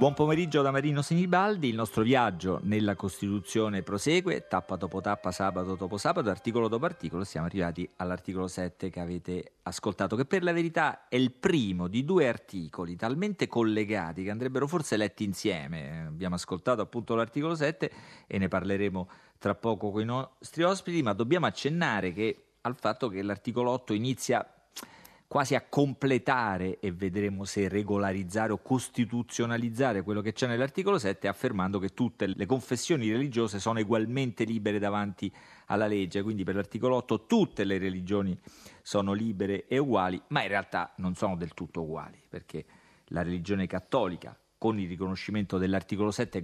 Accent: native